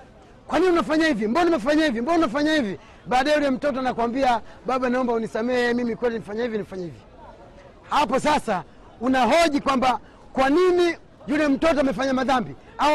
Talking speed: 160 wpm